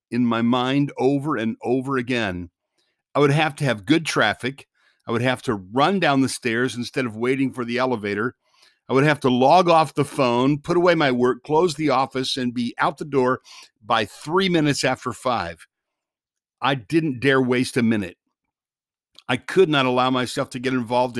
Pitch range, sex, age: 125-145 Hz, male, 50-69